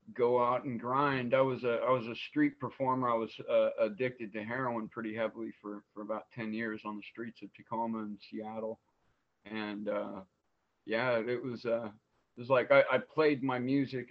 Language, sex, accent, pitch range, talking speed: English, male, American, 110-125 Hz, 195 wpm